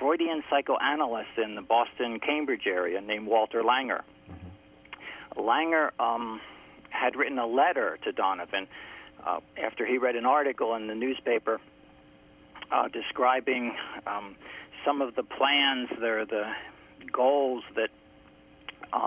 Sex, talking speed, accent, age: male, 120 wpm, American, 50-69